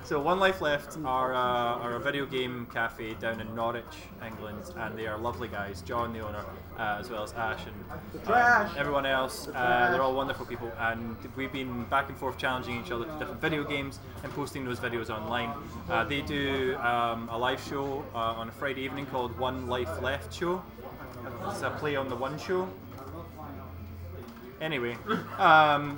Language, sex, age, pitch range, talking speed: English, male, 20-39, 115-145 Hz, 185 wpm